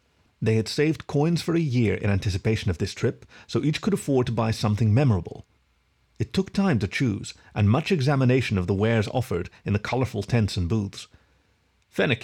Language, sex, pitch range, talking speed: English, male, 100-135 Hz, 190 wpm